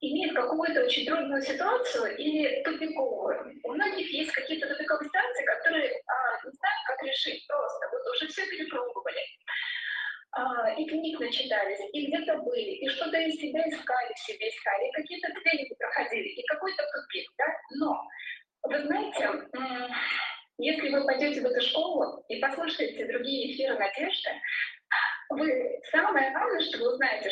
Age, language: 20-39, Russian